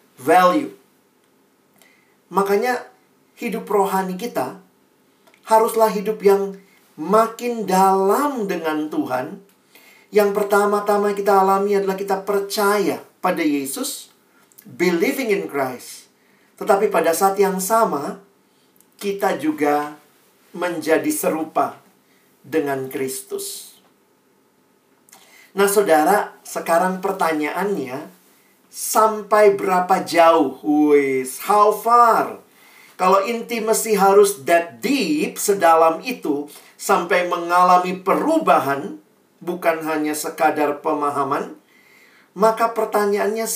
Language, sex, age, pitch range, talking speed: Indonesian, male, 50-69, 155-210 Hz, 85 wpm